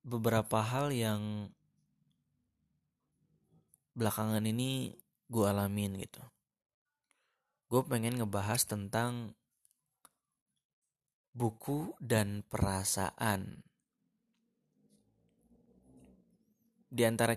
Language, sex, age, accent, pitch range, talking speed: Indonesian, male, 20-39, native, 100-125 Hz, 60 wpm